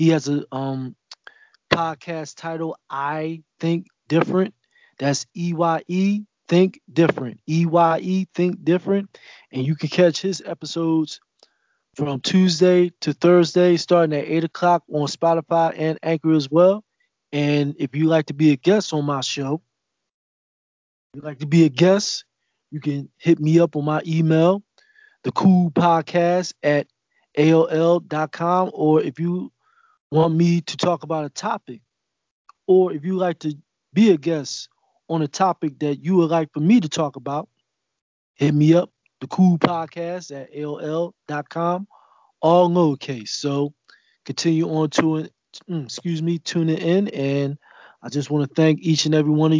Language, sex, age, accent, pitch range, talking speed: English, male, 20-39, American, 150-175 Hz, 150 wpm